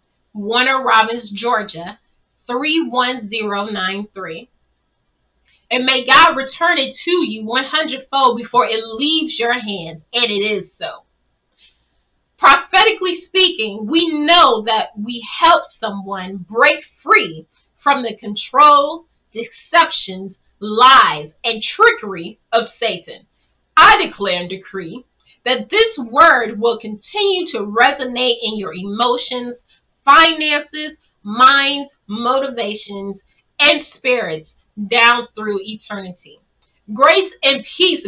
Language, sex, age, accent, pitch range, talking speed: English, female, 30-49, American, 205-295 Hz, 105 wpm